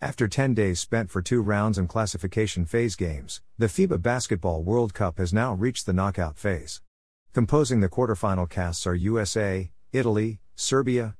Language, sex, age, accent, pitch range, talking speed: English, male, 50-69, American, 90-115 Hz, 160 wpm